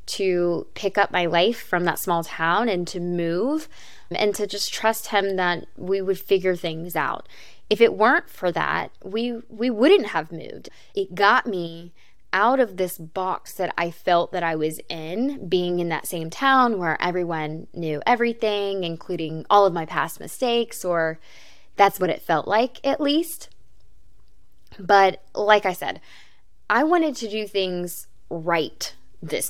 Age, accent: 10-29, American